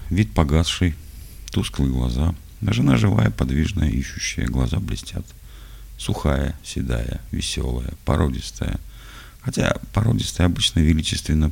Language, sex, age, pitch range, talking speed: Russian, male, 50-69, 65-85 Hz, 100 wpm